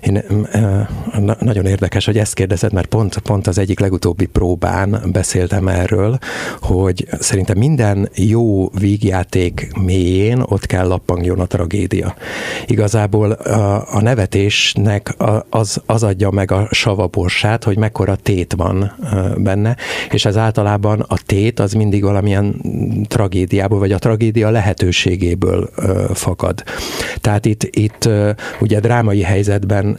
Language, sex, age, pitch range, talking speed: Hungarian, male, 60-79, 95-110 Hz, 120 wpm